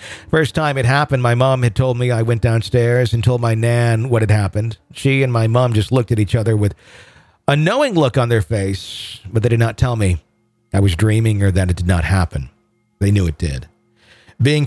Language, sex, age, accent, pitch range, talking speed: English, male, 40-59, American, 100-125 Hz, 225 wpm